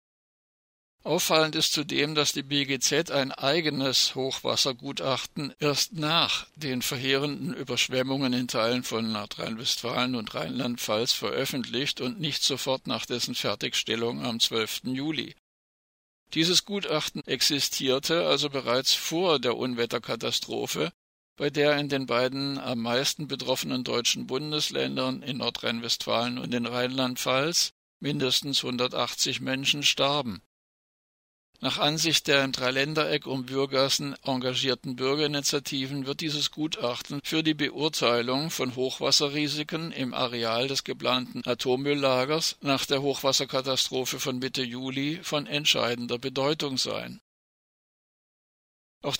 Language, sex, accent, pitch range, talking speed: German, male, German, 125-145 Hz, 110 wpm